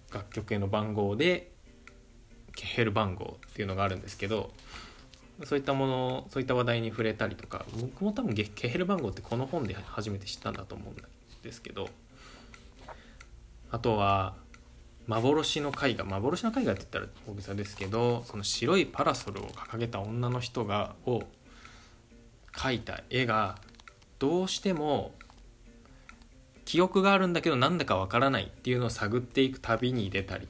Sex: male